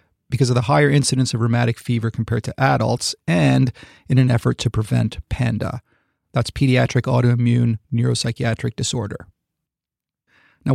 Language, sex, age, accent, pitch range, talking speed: English, male, 30-49, American, 110-135 Hz, 135 wpm